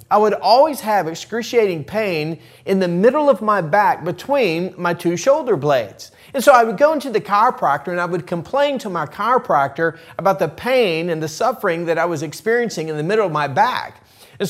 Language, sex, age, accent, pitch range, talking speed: English, male, 40-59, American, 170-230 Hz, 205 wpm